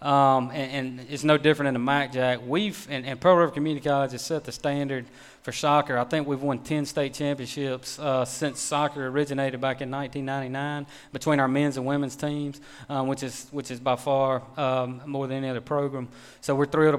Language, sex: English, male